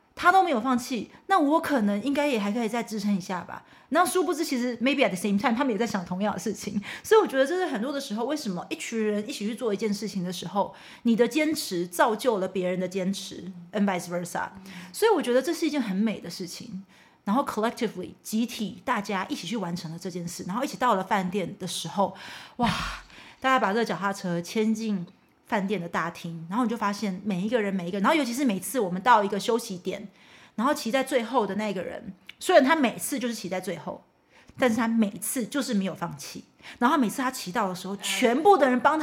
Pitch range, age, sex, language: 190-265 Hz, 30-49, female, English